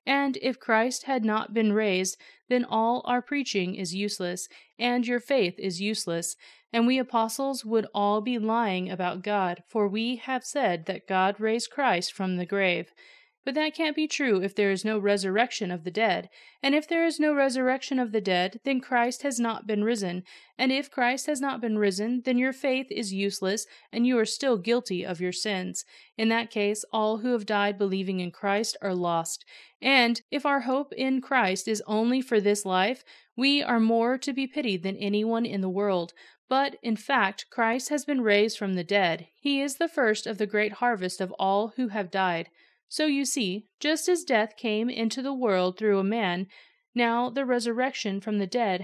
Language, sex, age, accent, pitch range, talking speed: English, female, 30-49, American, 195-255 Hz, 200 wpm